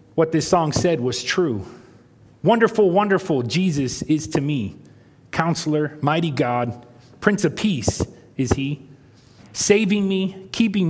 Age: 30-49